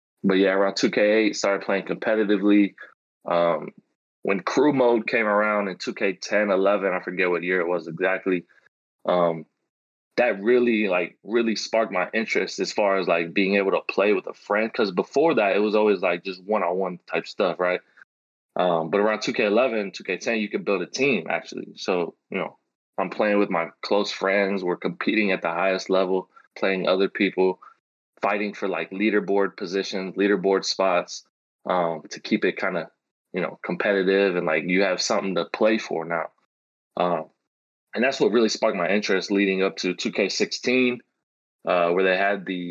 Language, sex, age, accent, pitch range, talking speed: English, male, 20-39, American, 90-105 Hz, 175 wpm